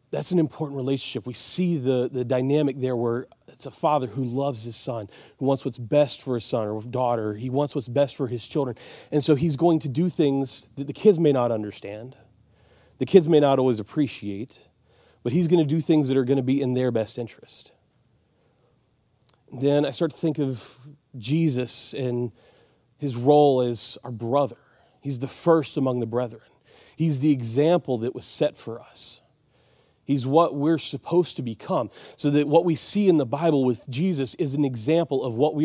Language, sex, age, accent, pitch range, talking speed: English, male, 30-49, American, 125-150 Hz, 195 wpm